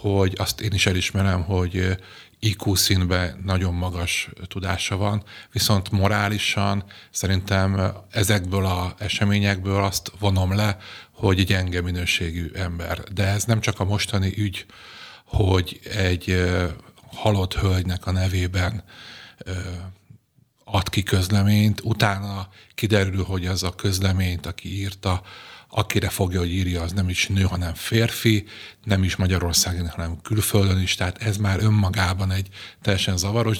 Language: Hungarian